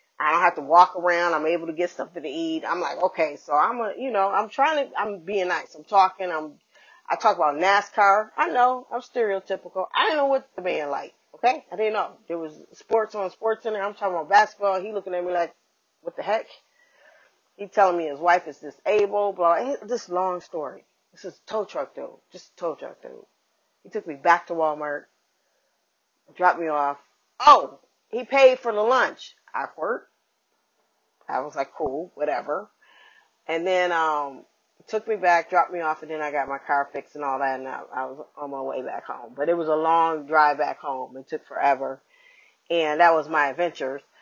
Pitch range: 155-210 Hz